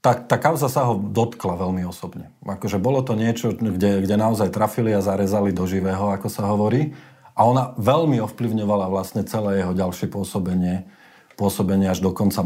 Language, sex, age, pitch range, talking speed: Slovak, male, 40-59, 100-120 Hz, 175 wpm